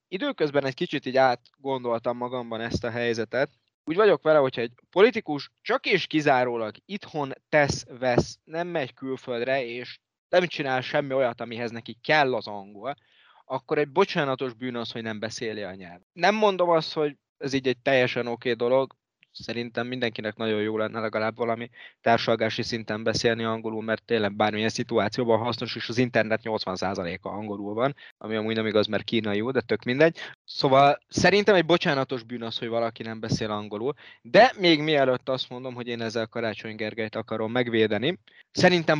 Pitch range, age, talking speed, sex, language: 115-140 Hz, 20-39, 170 wpm, male, Hungarian